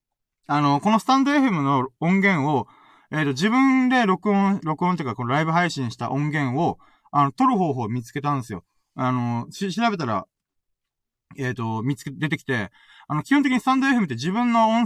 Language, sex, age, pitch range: Japanese, male, 20-39, 125-210 Hz